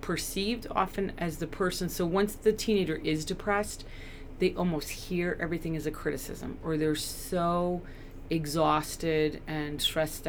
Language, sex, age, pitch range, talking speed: English, female, 30-49, 150-175 Hz, 140 wpm